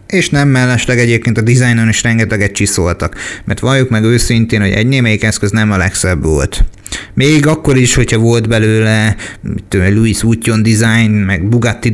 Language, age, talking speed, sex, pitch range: Hungarian, 30-49, 170 wpm, male, 110-125 Hz